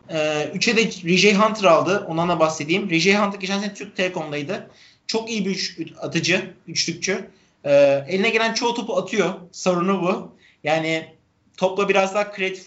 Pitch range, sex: 160-205 Hz, male